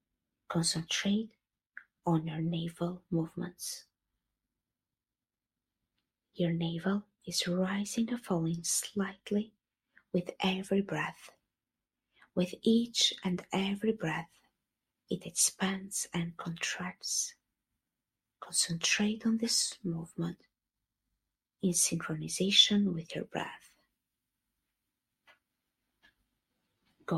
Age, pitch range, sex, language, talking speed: 30-49, 165-200 Hz, female, English, 75 wpm